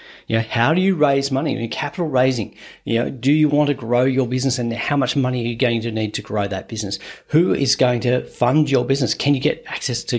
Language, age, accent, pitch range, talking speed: English, 40-59, Australian, 125-160 Hz, 270 wpm